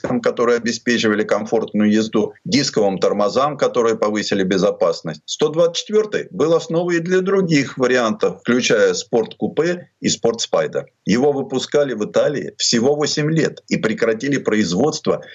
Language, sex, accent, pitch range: Russian, male, native, 135-190 Hz